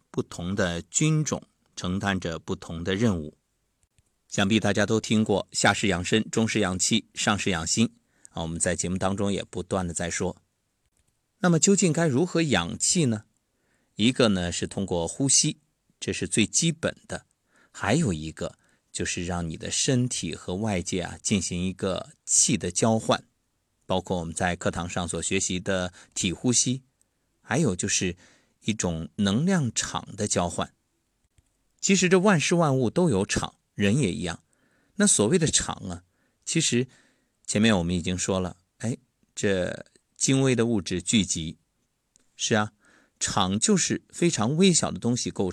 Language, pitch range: Chinese, 90-125 Hz